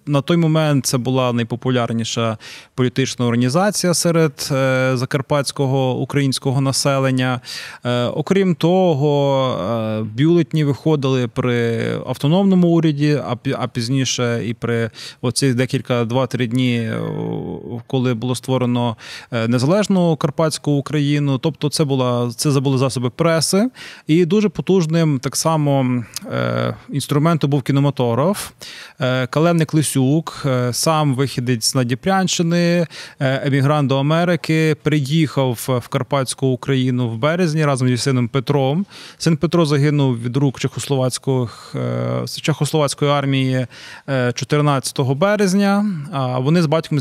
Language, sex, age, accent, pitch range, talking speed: Ukrainian, male, 20-39, native, 130-155 Hz, 95 wpm